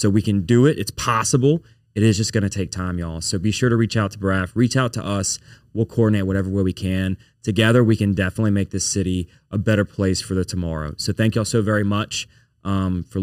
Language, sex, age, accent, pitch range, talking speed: English, male, 20-39, American, 105-120 Hz, 245 wpm